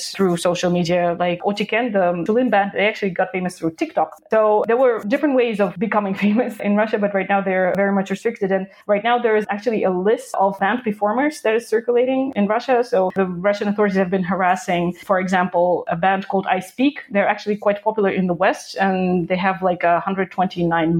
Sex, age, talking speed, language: female, 20-39, 210 wpm, English